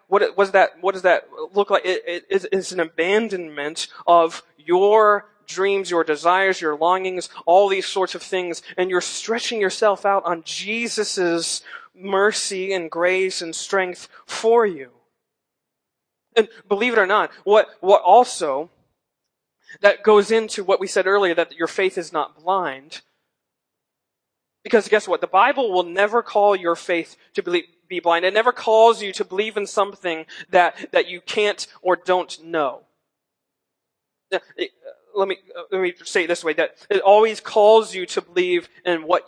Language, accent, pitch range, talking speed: English, American, 175-210 Hz, 160 wpm